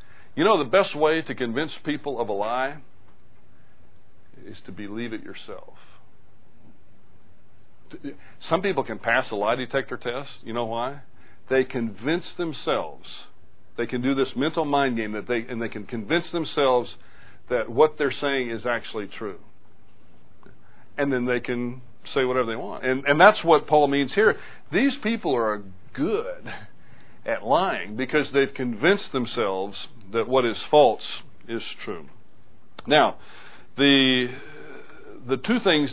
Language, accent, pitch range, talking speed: English, American, 120-155 Hz, 145 wpm